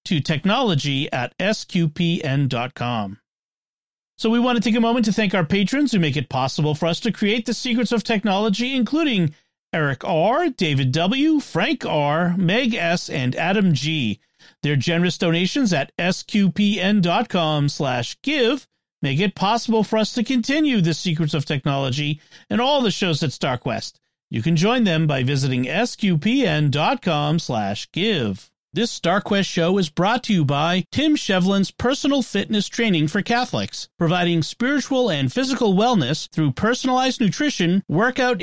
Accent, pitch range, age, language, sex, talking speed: American, 160-230 Hz, 40-59, English, male, 150 wpm